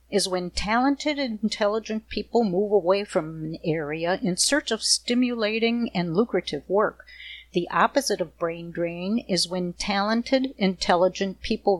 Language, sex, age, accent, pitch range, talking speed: English, female, 50-69, American, 170-230 Hz, 140 wpm